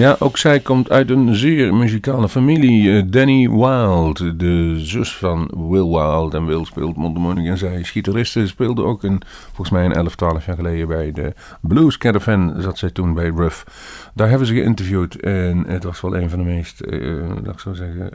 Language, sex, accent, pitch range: Dutch, male, Dutch, 85-110 Hz